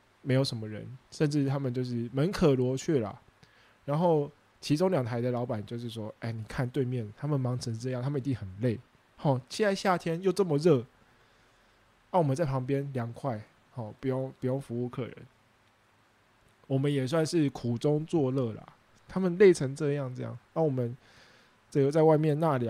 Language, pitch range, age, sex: English, 120-155 Hz, 20-39, male